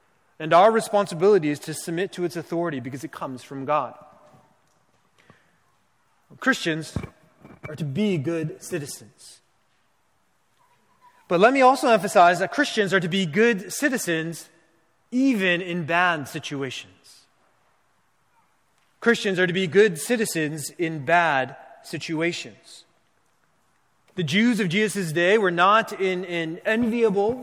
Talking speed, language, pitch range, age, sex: 120 wpm, English, 165-210 Hz, 30-49, male